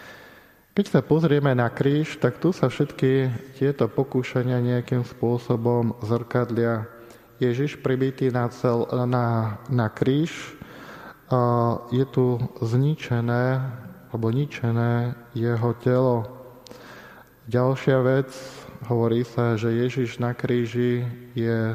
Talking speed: 100 wpm